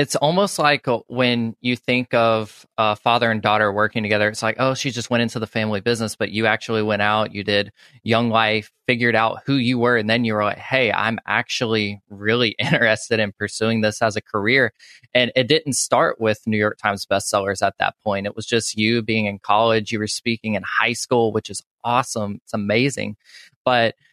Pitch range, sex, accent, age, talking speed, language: 105-125 Hz, male, American, 20-39, 210 wpm, English